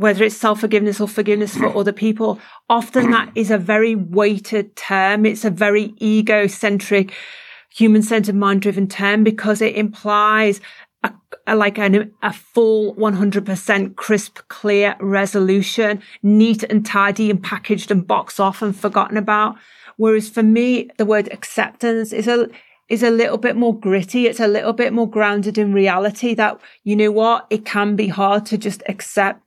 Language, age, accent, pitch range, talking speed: English, 40-59, British, 200-220 Hz, 165 wpm